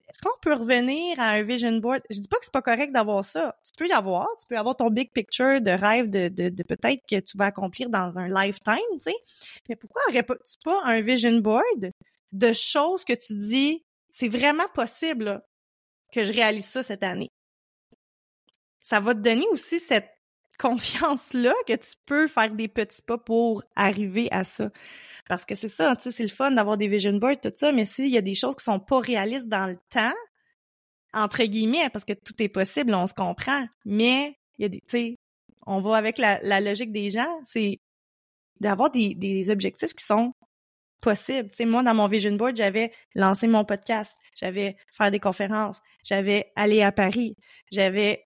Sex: female